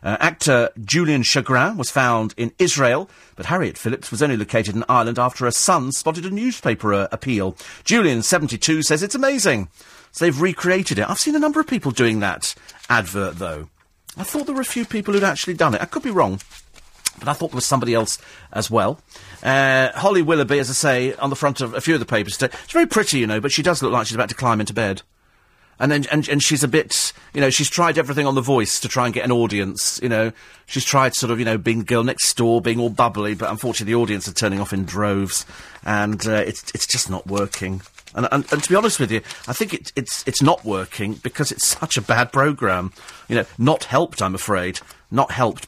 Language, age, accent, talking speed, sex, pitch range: English, 40-59, British, 240 wpm, male, 110-150 Hz